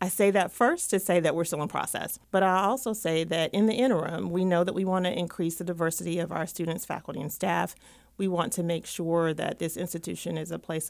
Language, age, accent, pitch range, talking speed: English, 40-59, American, 165-200 Hz, 240 wpm